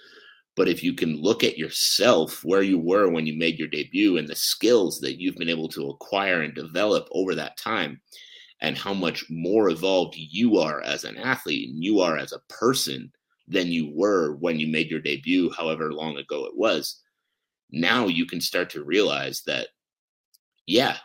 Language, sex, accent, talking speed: English, male, American, 190 wpm